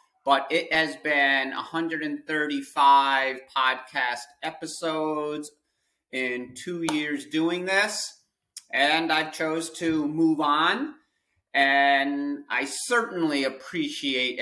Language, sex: English, male